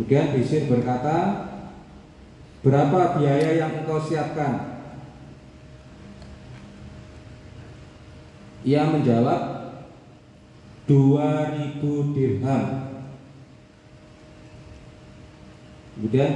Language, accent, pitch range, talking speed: Indonesian, native, 120-145 Hz, 50 wpm